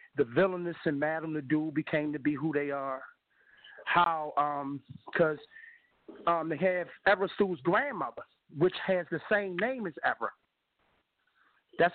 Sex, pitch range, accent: male, 150-185 Hz, American